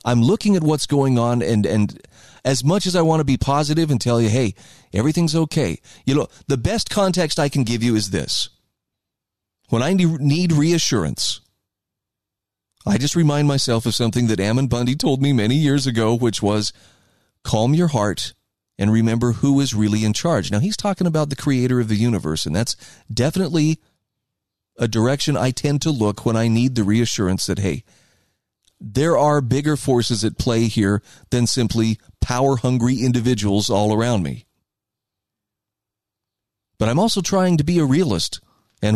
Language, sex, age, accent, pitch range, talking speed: English, male, 30-49, American, 105-145 Hz, 170 wpm